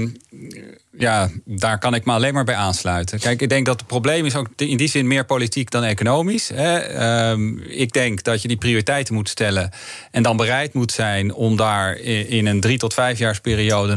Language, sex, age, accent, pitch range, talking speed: Dutch, male, 40-59, Dutch, 105-125 Hz, 200 wpm